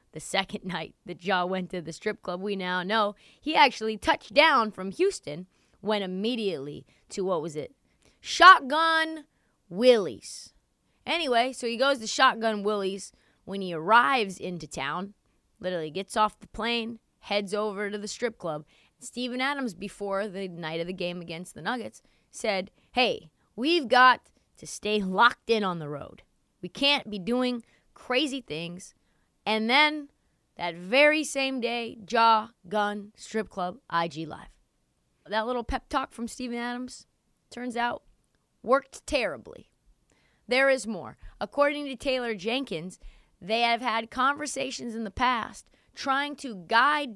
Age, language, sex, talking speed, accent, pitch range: 20-39, English, female, 150 wpm, American, 190-250 Hz